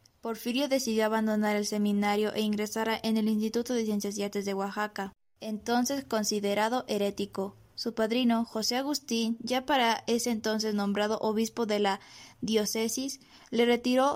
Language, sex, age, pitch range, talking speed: Spanish, female, 20-39, 210-235 Hz, 145 wpm